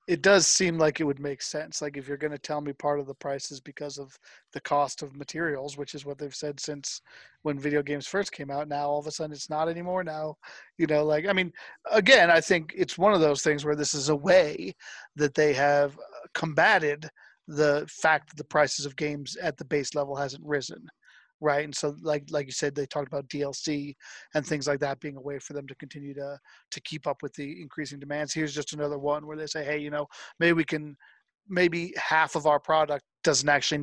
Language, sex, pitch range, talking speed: English, male, 145-160 Hz, 230 wpm